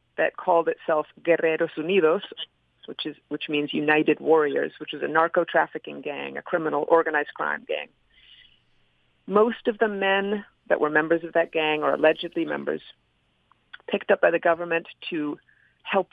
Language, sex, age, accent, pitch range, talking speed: English, female, 40-59, American, 155-205 Hz, 155 wpm